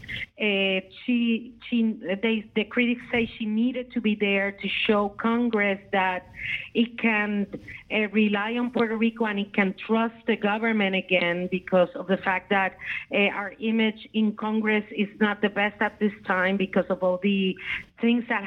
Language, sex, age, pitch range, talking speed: English, female, 40-59, 195-230 Hz, 160 wpm